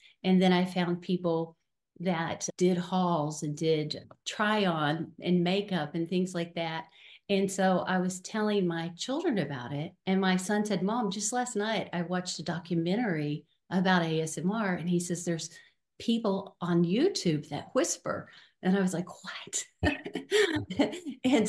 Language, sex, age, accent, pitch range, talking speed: English, female, 50-69, American, 170-195 Hz, 155 wpm